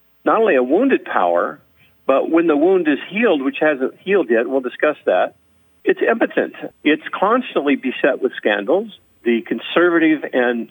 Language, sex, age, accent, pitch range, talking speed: English, male, 50-69, American, 120-195 Hz, 155 wpm